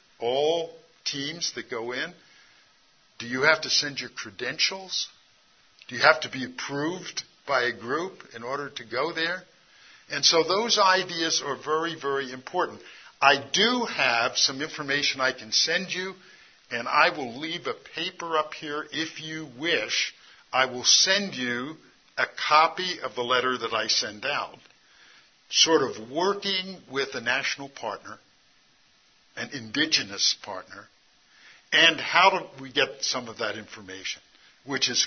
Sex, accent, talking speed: male, American, 150 wpm